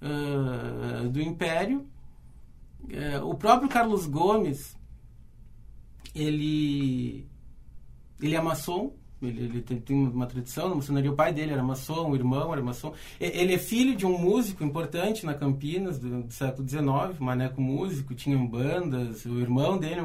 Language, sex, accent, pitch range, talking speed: Portuguese, male, Brazilian, 130-170 Hz, 140 wpm